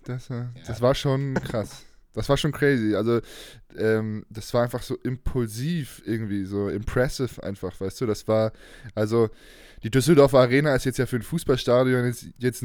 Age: 20-39